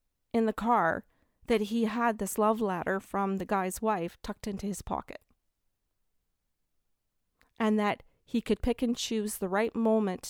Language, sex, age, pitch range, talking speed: English, female, 40-59, 190-220 Hz, 155 wpm